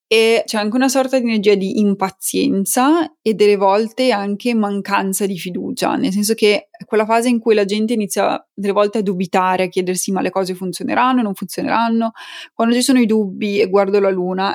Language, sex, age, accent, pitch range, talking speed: Italian, female, 20-39, native, 195-245 Hz, 200 wpm